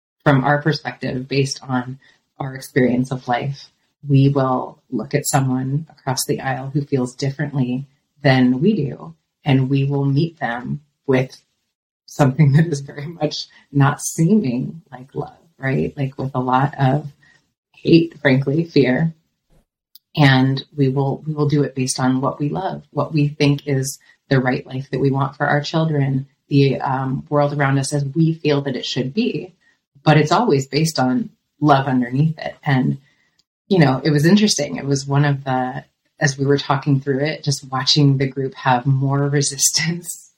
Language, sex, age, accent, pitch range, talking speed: English, female, 30-49, American, 135-150 Hz, 170 wpm